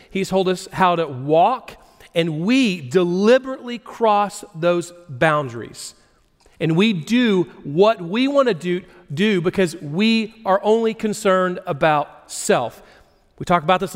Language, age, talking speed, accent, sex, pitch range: English, 40-59, 135 wpm, American, male, 165-215 Hz